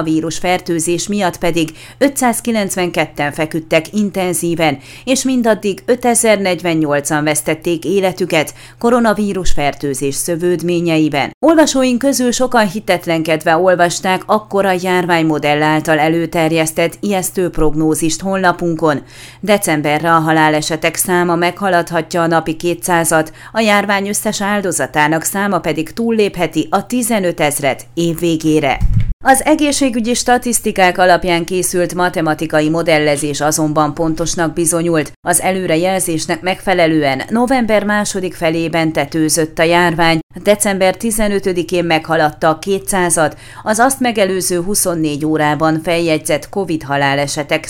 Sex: female